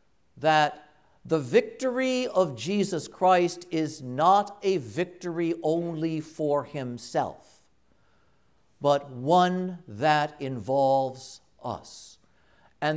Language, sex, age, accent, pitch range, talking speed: English, male, 50-69, American, 135-190 Hz, 90 wpm